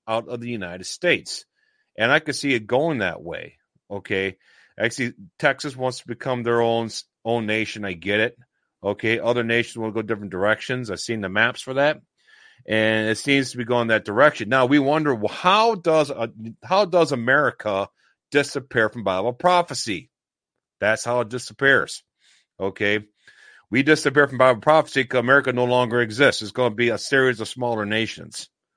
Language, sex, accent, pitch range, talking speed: English, male, American, 110-135 Hz, 175 wpm